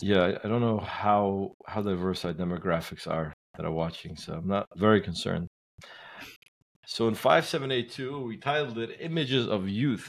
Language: English